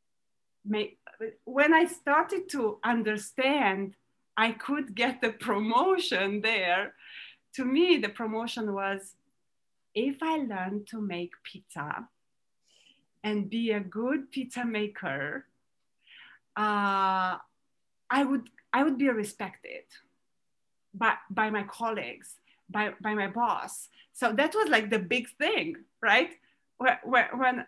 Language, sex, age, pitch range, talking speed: English, female, 30-49, 200-255 Hz, 115 wpm